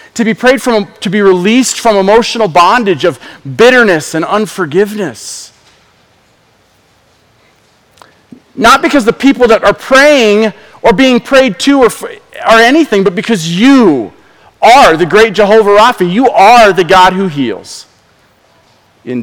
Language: English